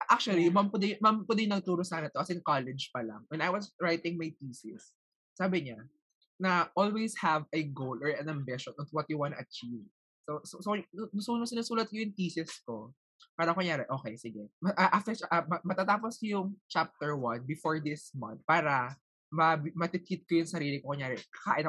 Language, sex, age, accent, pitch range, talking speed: Filipino, male, 20-39, native, 140-185 Hz, 190 wpm